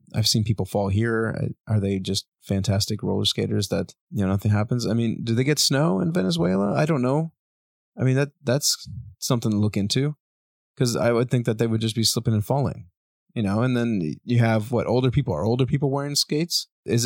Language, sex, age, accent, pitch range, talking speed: English, male, 20-39, American, 100-120 Hz, 220 wpm